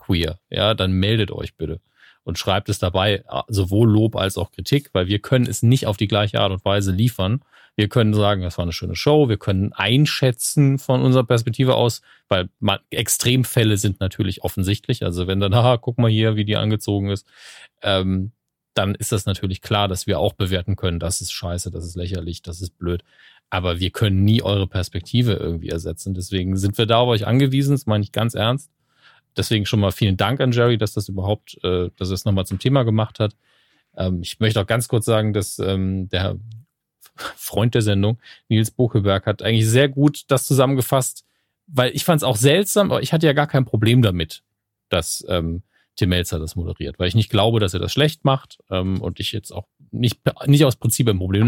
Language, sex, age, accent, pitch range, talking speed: German, male, 30-49, German, 95-120 Hz, 200 wpm